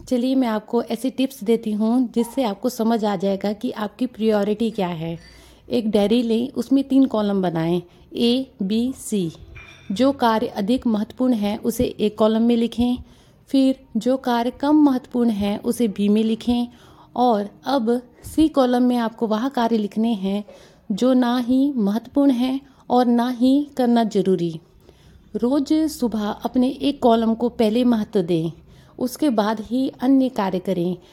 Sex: female